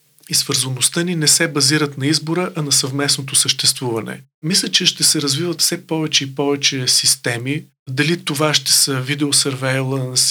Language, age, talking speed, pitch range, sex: Bulgarian, 40-59, 150 wpm, 135-160 Hz, male